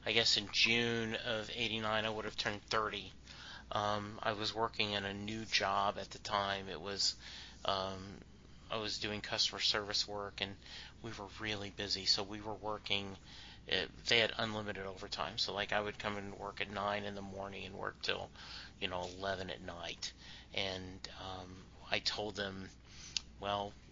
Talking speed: 180 wpm